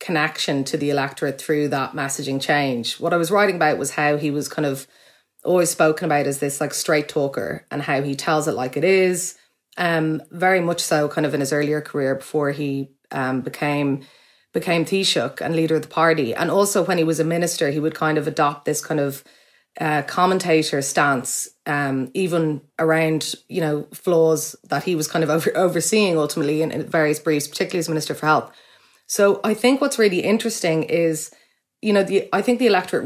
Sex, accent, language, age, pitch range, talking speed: female, Irish, English, 30-49, 145-175 Hz, 200 wpm